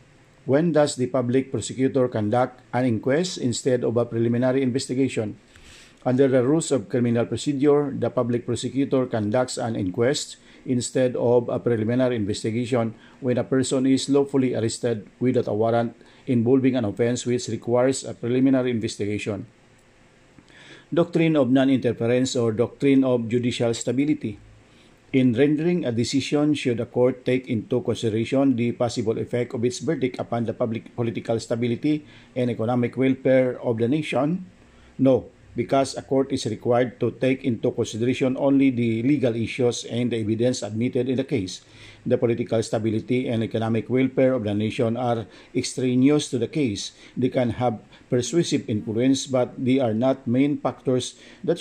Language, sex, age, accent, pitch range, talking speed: English, male, 50-69, Filipino, 115-135 Hz, 150 wpm